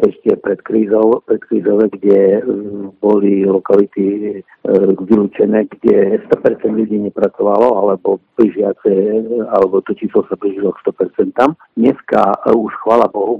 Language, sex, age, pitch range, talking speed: Slovak, male, 50-69, 95-110 Hz, 120 wpm